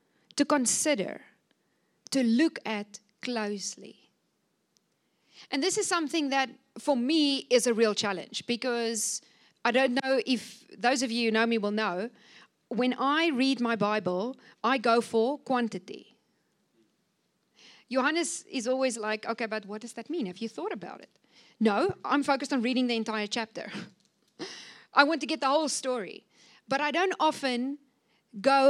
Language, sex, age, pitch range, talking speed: English, female, 40-59, 220-275 Hz, 155 wpm